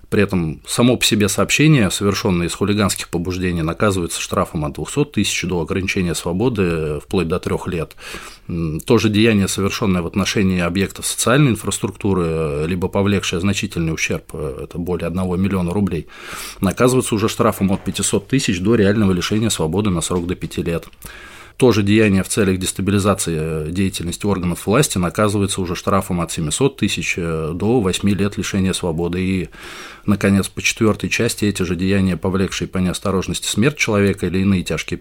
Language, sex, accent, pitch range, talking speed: Russian, male, native, 85-105 Hz, 155 wpm